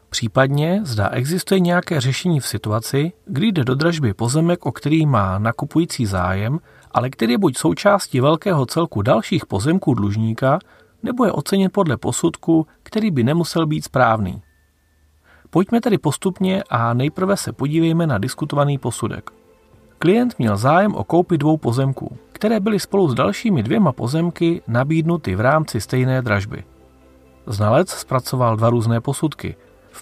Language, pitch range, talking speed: Czech, 115-170 Hz, 145 wpm